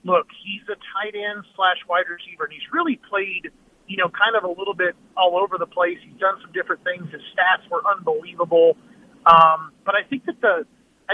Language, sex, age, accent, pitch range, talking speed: English, male, 30-49, American, 180-240 Hz, 210 wpm